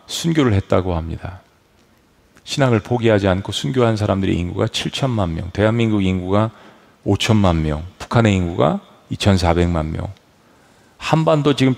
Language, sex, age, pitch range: Korean, male, 40-59, 100-150 Hz